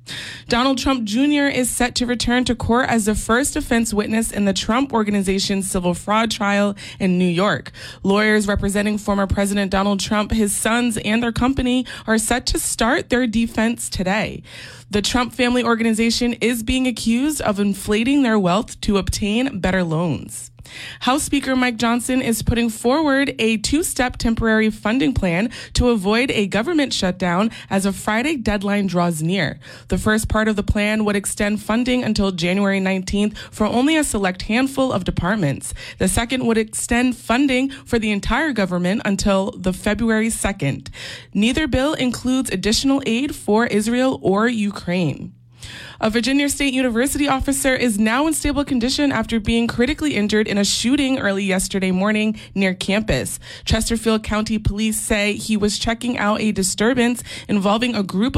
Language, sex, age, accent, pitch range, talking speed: English, female, 20-39, American, 195-245 Hz, 160 wpm